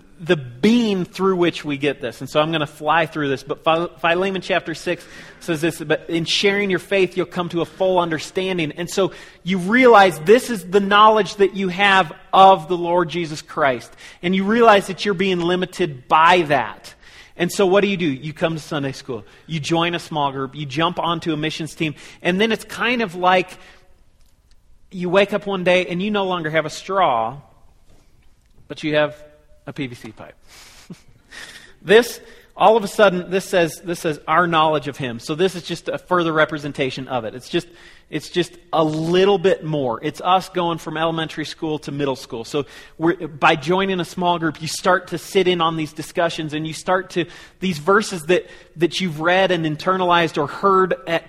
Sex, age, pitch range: male, 40-59, 155-185 Hz